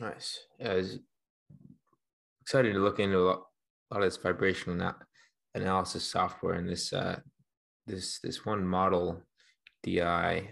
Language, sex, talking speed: English, male, 145 wpm